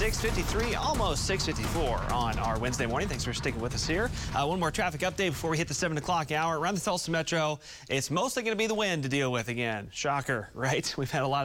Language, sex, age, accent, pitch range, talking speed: English, male, 30-49, American, 125-155 Hz, 240 wpm